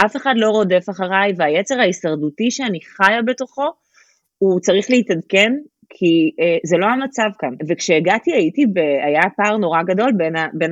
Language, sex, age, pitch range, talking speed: Hebrew, female, 30-49, 165-215 Hz, 155 wpm